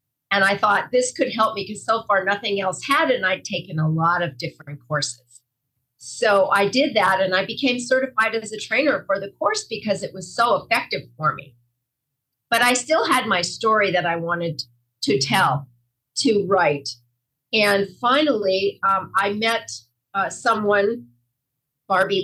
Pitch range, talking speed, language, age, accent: 155-225 Hz, 170 wpm, English, 50-69, American